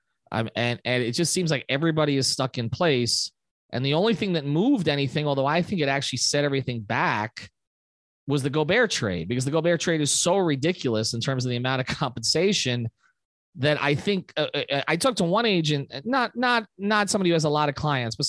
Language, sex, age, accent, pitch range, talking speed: English, male, 30-49, American, 130-175 Hz, 215 wpm